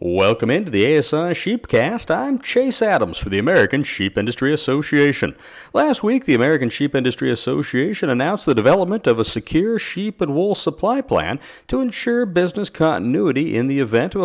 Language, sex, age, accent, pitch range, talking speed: English, male, 40-59, American, 125-185 Hz, 170 wpm